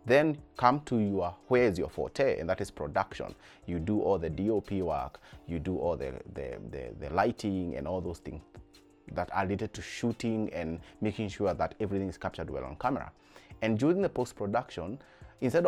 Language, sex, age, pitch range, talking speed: English, male, 30-49, 85-105 Hz, 190 wpm